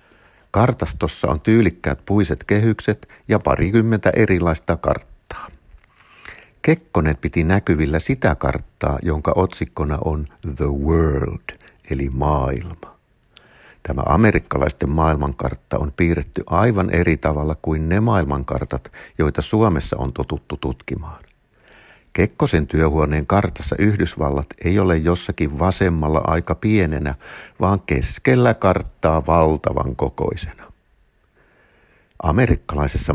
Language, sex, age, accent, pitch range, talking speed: Finnish, male, 60-79, native, 75-95 Hz, 95 wpm